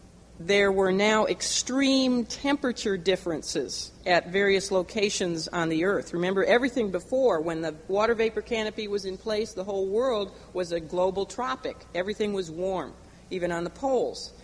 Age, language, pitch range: 50-69, English, 170-230 Hz